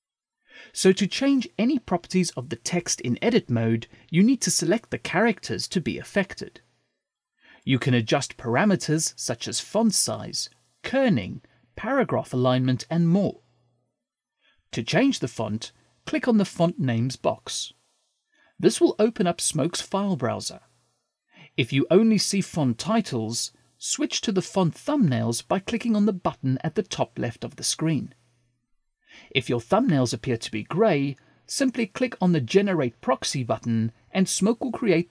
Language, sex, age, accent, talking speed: English, male, 40-59, British, 155 wpm